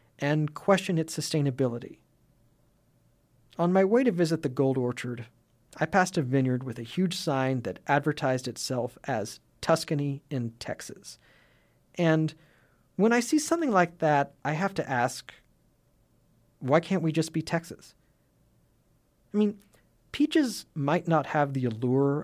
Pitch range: 125-165 Hz